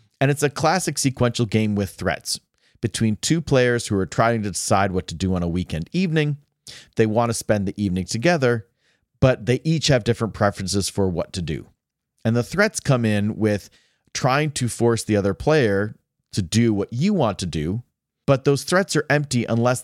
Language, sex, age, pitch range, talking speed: English, male, 30-49, 100-135 Hz, 195 wpm